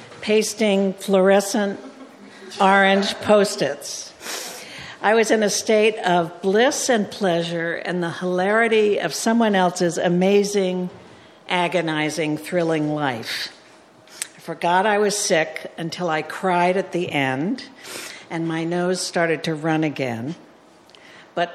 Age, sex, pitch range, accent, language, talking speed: 60-79, female, 155-195 Hz, American, English, 115 wpm